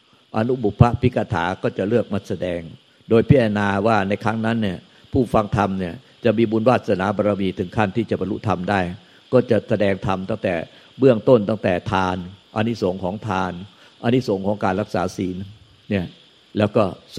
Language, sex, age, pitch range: Thai, male, 60-79, 95-115 Hz